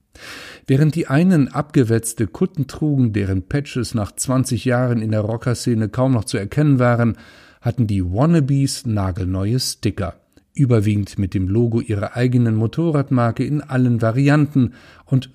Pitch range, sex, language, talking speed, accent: 105-135 Hz, male, German, 135 wpm, German